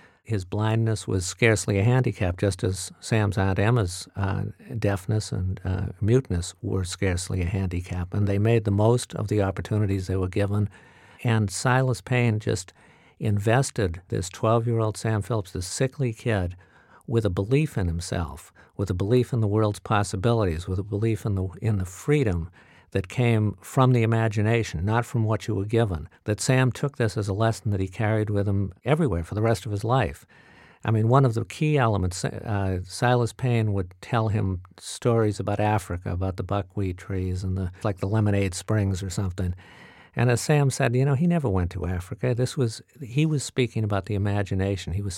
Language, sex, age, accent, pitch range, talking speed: English, male, 50-69, American, 95-115 Hz, 185 wpm